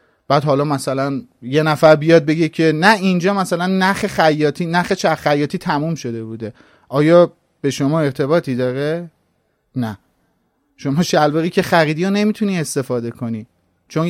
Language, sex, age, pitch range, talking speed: Persian, male, 30-49, 135-185 Hz, 135 wpm